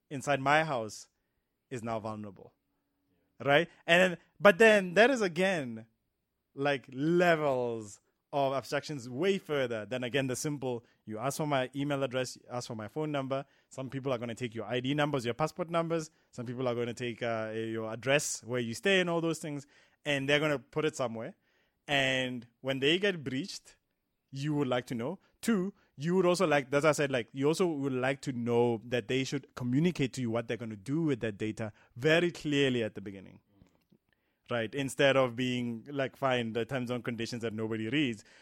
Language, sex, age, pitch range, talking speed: English, male, 20-39, 120-150 Hz, 200 wpm